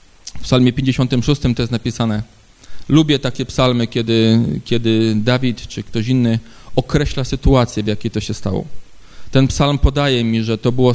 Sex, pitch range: male, 115-140 Hz